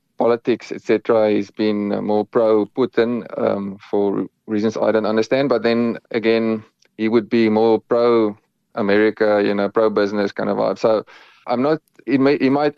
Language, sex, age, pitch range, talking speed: English, male, 30-49, 110-135 Hz, 175 wpm